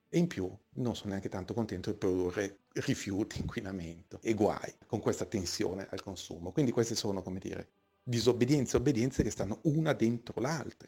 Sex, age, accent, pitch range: male, 40-59, native, 95-130 Hz